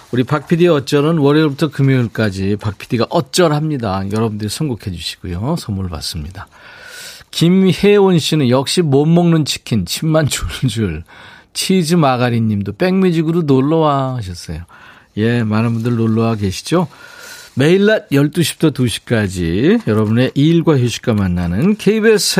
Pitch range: 105-165 Hz